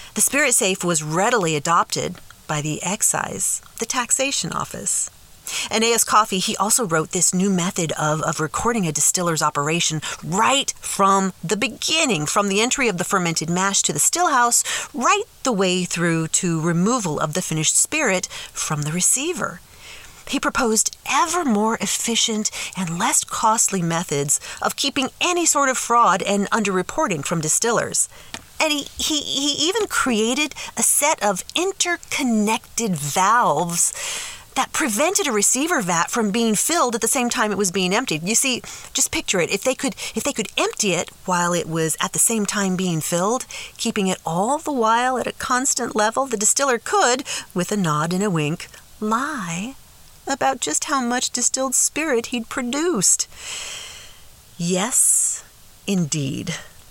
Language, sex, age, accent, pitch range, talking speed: English, female, 40-59, American, 180-265 Hz, 160 wpm